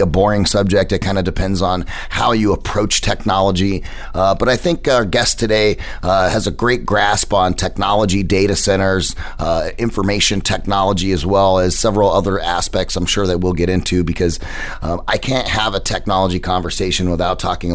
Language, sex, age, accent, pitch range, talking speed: English, male, 30-49, American, 85-100 Hz, 180 wpm